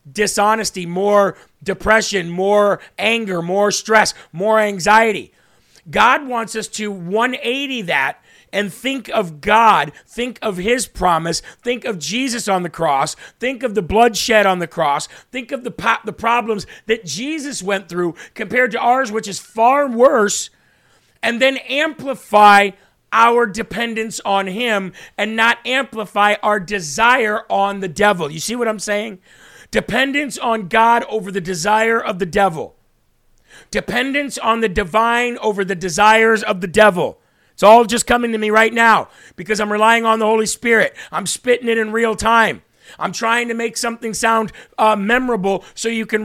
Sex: male